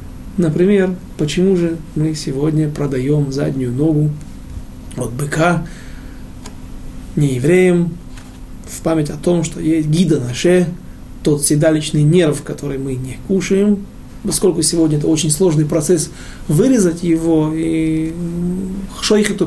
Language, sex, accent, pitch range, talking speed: Russian, male, native, 145-180 Hz, 115 wpm